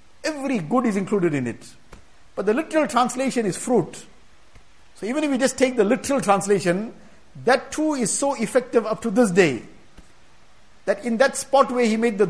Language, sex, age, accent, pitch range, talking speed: English, male, 50-69, Indian, 170-255 Hz, 185 wpm